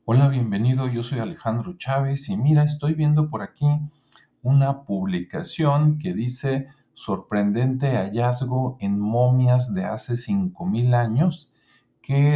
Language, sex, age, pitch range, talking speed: Spanish, male, 50-69, 110-150 Hz, 120 wpm